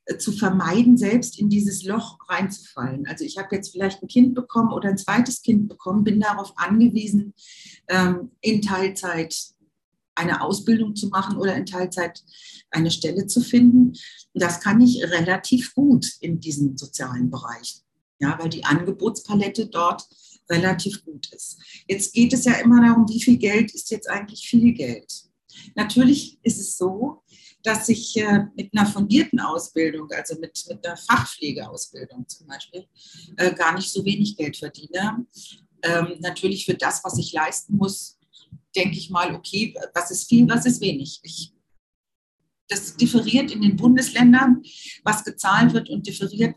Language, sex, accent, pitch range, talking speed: German, female, German, 170-225 Hz, 155 wpm